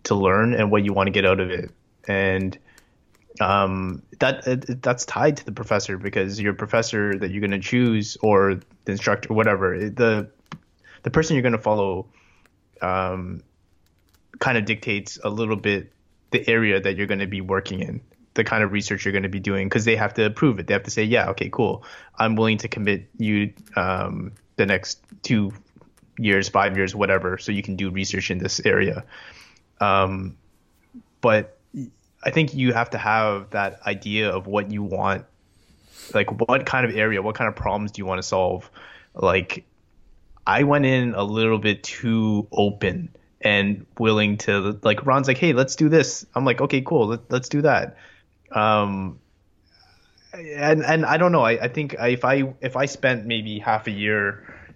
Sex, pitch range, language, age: male, 95-115 Hz, English, 20-39